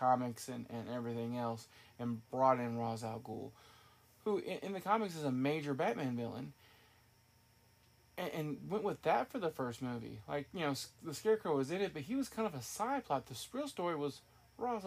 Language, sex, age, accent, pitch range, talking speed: English, male, 20-39, American, 120-165 Hz, 205 wpm